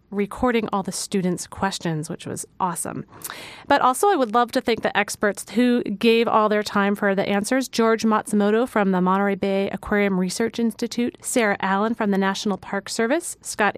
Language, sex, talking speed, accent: English, female, 185 wpm, American